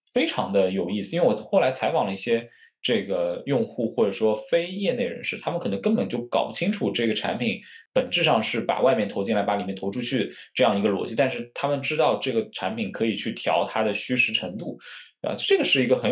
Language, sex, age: Chinese, male, 20-39